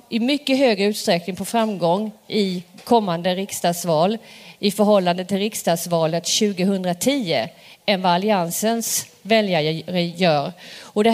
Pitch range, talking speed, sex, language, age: 190-245 Hz, 110 wpm, female, Swedish, 40-59